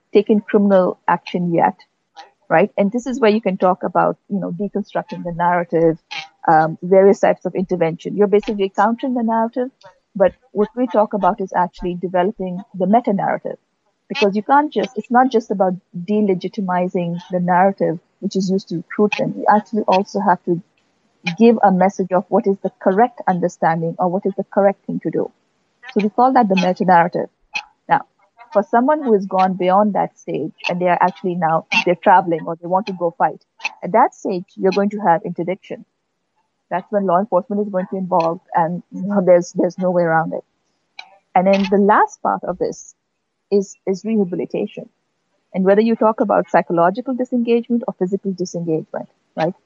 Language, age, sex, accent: English, 50-69, female, Indian